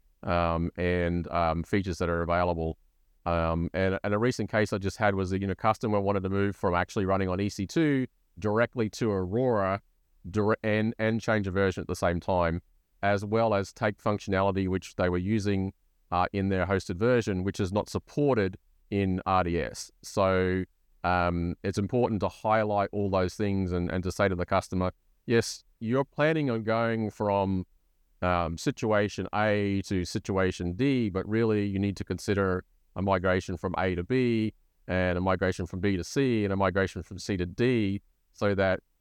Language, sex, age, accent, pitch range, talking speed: English, male, 30-49, Australian, 90-105 Hz, 180 wpm